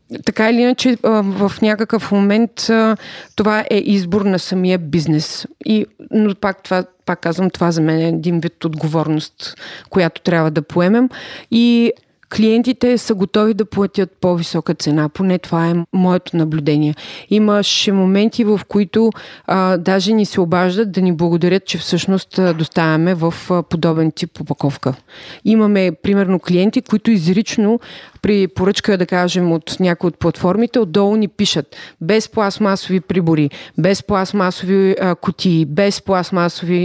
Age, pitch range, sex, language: 30-49, 175-215 Hz, female, Bulgarian